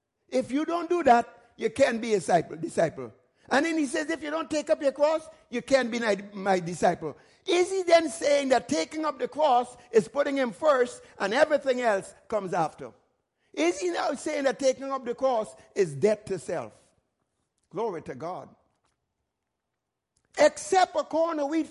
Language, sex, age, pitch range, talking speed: English, male, 60-79, 210-300 Hz, 180 wpm